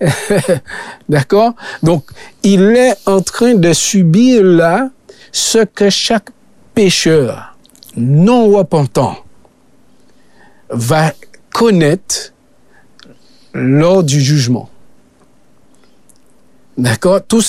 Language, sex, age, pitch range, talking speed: French, male, 50-69, 145-200 Hz, 75 wpm